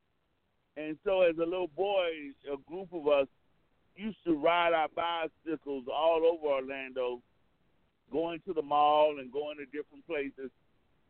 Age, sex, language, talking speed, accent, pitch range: 50-69, male, English, 145 wpm, American, 145-190 Hz